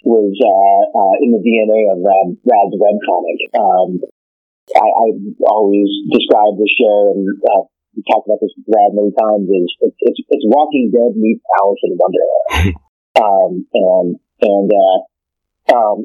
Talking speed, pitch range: 160 wpm, 105-135 Hz